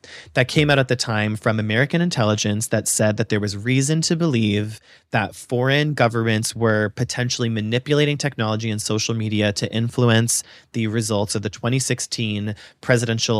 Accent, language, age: American, English, 30-49